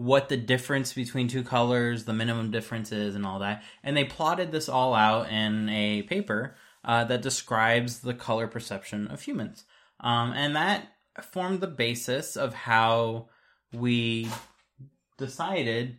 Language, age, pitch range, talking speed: English, 20-39, 115-140 Hz, 150 wpm